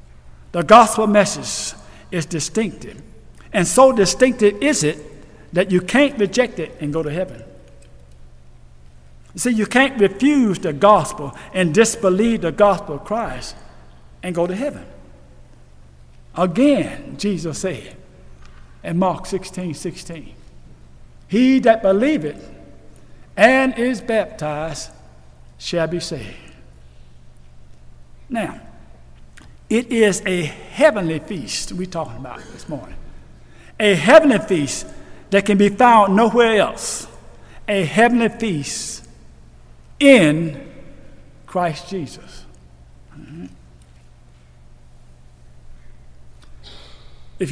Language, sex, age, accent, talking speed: English, male, 60-79, American, 100 wpm